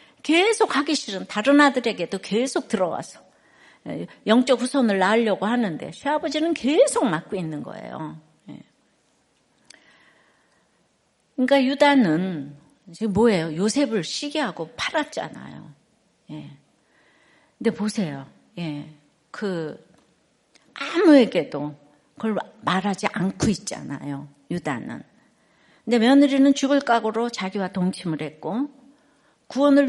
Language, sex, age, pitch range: Korean, female, 60-79, 185-275 Hz